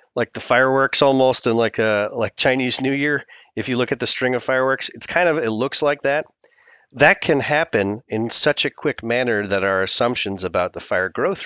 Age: 40-59